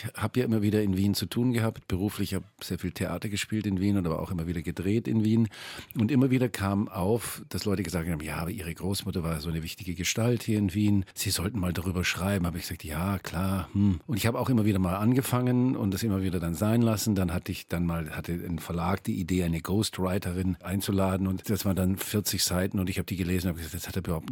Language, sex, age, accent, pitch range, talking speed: German, male, 50-69, German, 90-110 Hz, 250 wpm